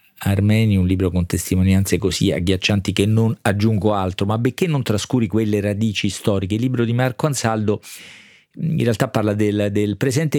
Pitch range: 100-120 Hz